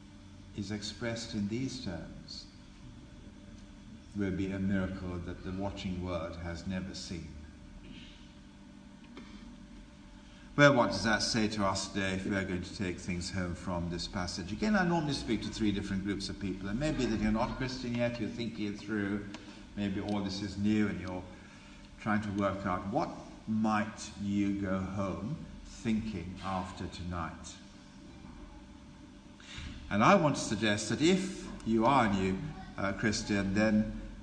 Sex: male